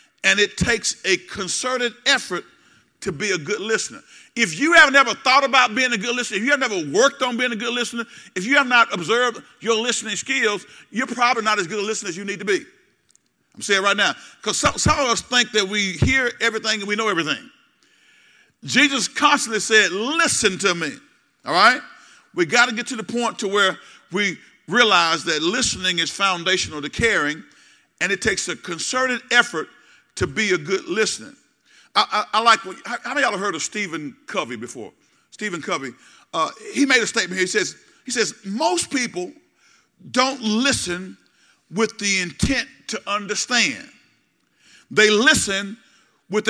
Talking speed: 185 wpm